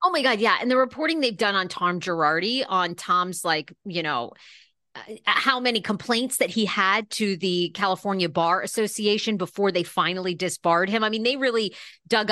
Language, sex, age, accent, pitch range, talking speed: English, female, 30-49, American, 170-220 Hz, 185 wpm